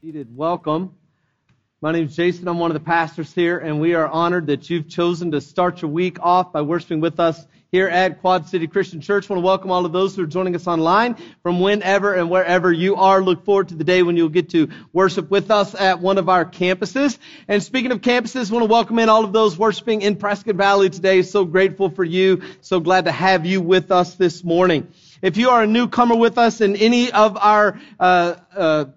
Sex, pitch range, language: male, 170-210 Hz, English